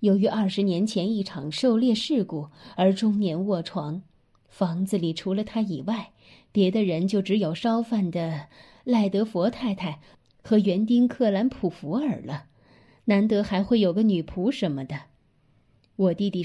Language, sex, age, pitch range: Chinese, female, 20-39, 175-225 Hz